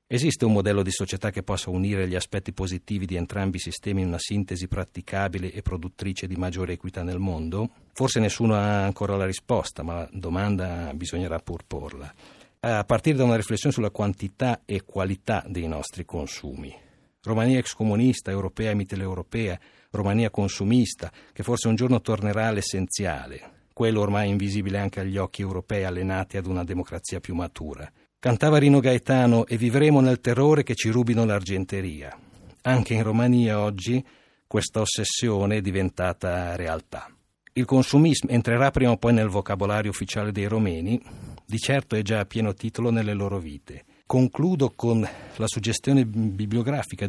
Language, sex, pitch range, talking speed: Italian, male, 95-120 Hz, 155 wpm